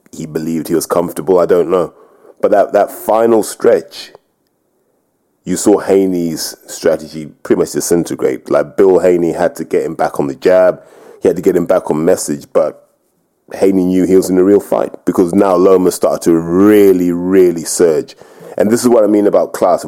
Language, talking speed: English, 195 wpm